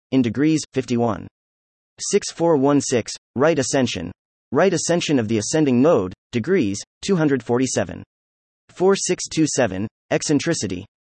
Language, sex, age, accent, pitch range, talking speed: English, male, 30-49, American, 110-155 Hz, 85 wpm